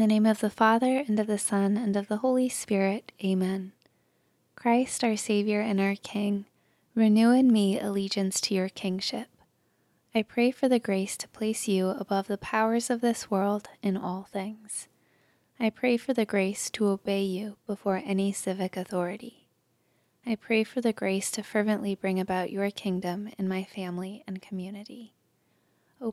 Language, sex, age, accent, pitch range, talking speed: English, female, 20-39, American, 195-225 Hz, 170 wpm